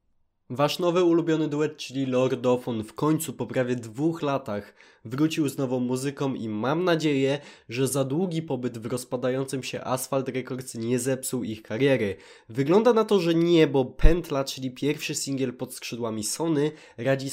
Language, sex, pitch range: Polish, male, 120-150 Hz